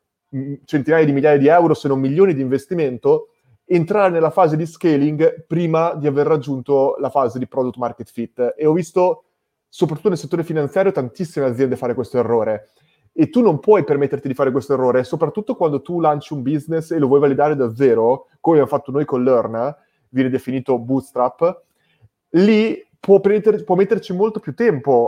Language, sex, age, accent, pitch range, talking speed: Italian, male, 30-49, native, 135-175 Hz, 180 wpm